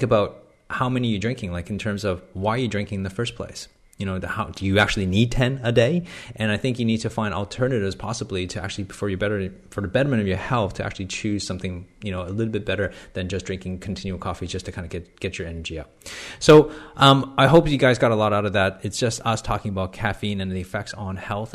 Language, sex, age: English, male, 30-49